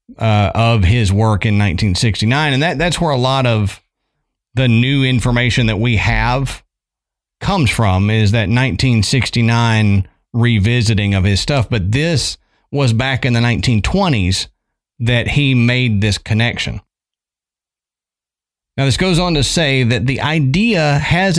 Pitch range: 110-135 Hz